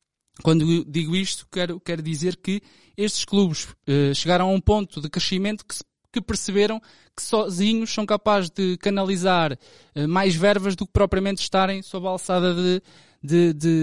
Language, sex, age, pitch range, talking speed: Portuguese, male, 20-39, 150-190 Hz, 155 wpm